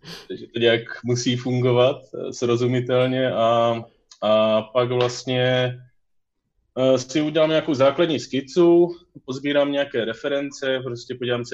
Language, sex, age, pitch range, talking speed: Czech, male, 20-39, 100-125 Hz, 110 wpm